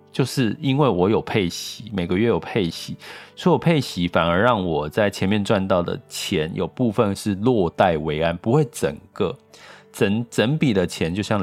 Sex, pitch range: male, 90-120 Hz